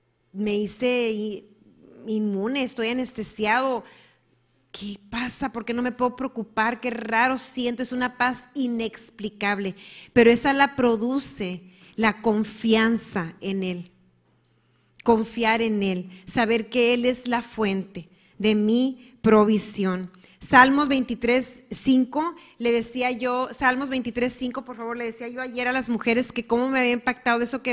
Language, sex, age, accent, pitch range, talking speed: Spanish, female, 30-49, Mexican, 210-250 Hz, 135 wpm